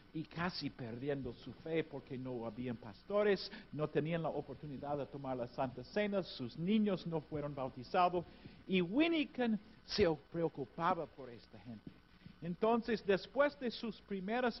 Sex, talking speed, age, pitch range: male, 145 wpm, 50-69, 145-220 Hz